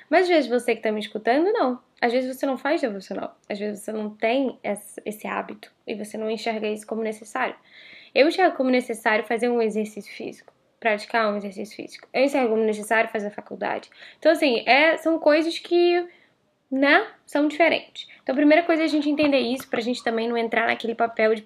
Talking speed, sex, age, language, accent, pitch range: 205 wpm, female, 10-29, Portuguese, Brazilian, 215-265 Hz